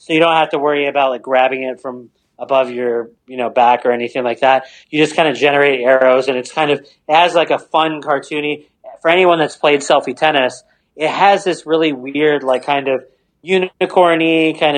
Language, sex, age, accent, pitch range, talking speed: English, male, 30-49, American, 130-155 Hz, 215 wpm